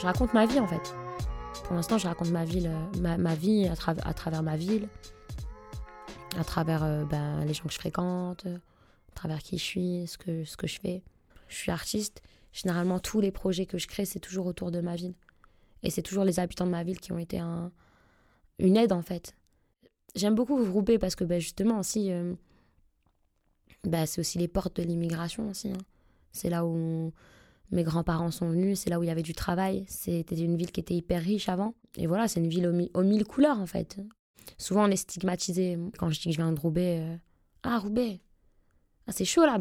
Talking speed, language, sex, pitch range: 225 wpm, French, female, 165-195 Hz